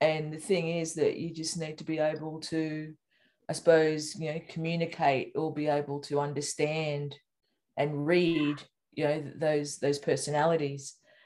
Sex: female